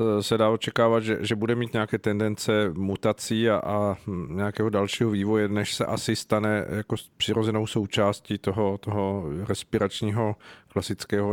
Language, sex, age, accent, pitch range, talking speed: Czech, male, 40-59, native, 100-115 Hz, 140 wpm